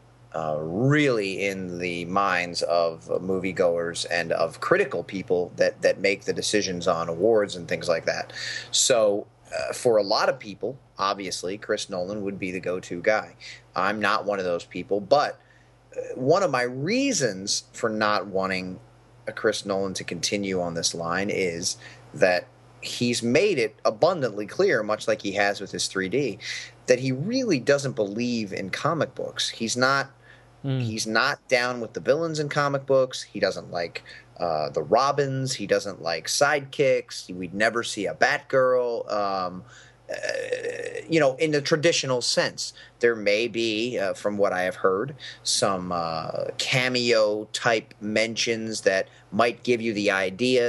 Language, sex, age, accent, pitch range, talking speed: English, male, 30-49, American, 95-130 Hz, 160 wpm